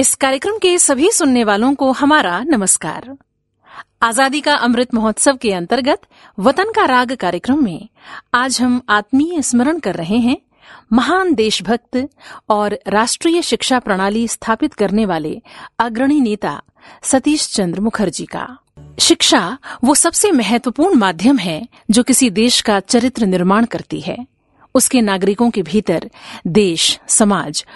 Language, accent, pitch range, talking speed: Hindi, native, 210-280 Hz, 135 wpm